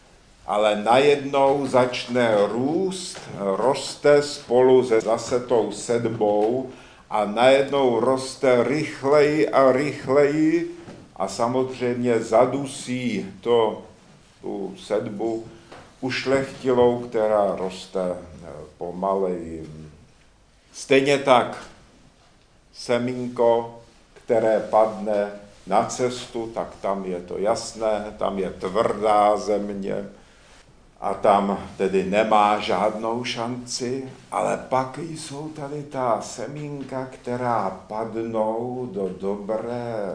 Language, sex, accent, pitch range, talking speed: Czech, male, native, 105-130 Hz, 85 wpm